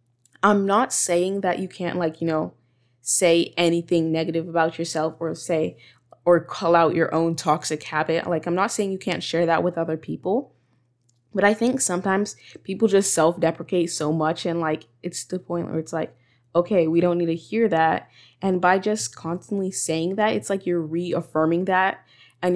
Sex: female